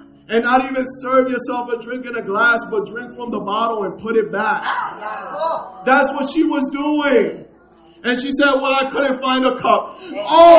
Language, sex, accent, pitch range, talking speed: English, male, American, 230-280 Hz, 195 wpm